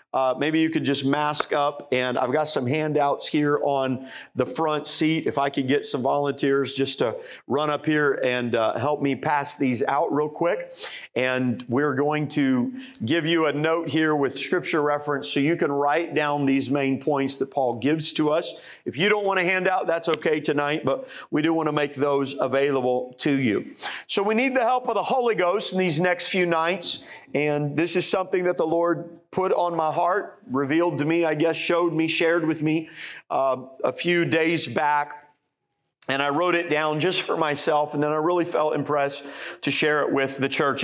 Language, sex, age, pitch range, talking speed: English, male, 40-59, 140-170 Hz, 210 wpm